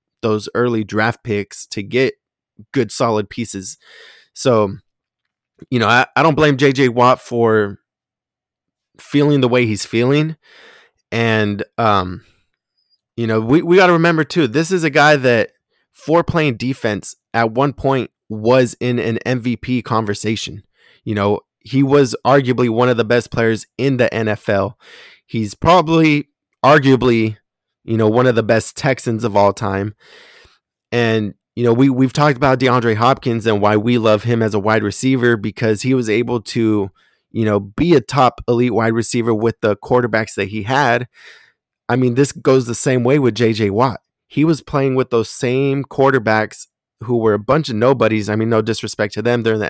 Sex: male